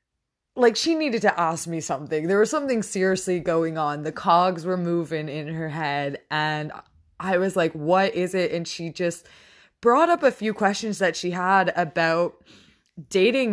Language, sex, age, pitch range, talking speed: English, female, 20-39, 155-200 Hz, 175 wpm